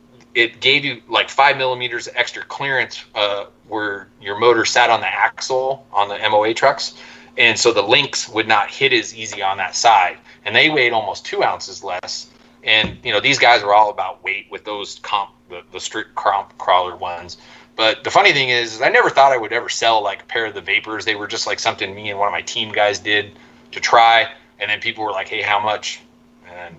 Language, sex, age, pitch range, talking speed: English, male, 30-49, 105-125 Hz, 225 wpm